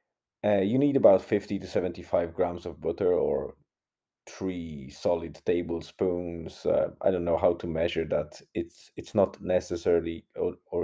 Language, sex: English, male